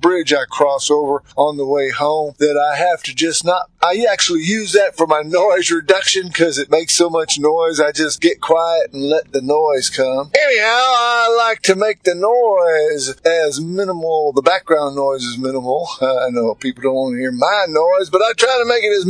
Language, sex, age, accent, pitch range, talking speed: English, male, 50-69, American, 155-245 Hz, 210 wpm